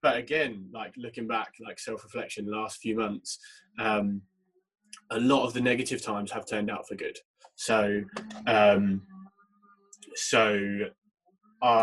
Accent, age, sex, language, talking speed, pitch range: British, 20-39, male, English, 140 wpm, 105-125 Hz